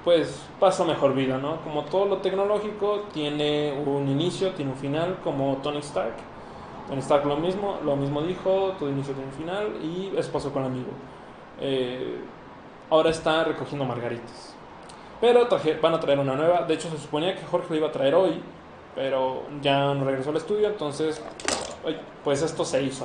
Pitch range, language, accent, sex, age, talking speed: 140-185 Hz, Spanish, Mexican, male, 20-39, 175 wpm